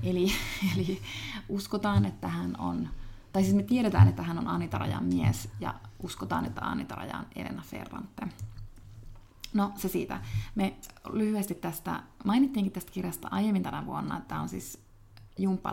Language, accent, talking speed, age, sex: Finnish, native, 150 wpm, 30-49, female